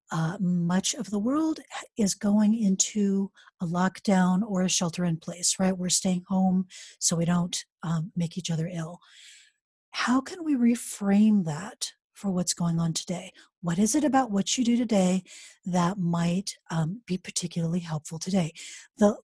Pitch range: 180-235 Hz